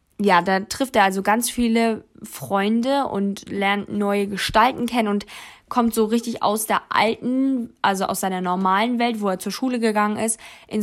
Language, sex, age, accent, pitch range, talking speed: German, female, 20-39, German, 200-240 Hz, 175 wpm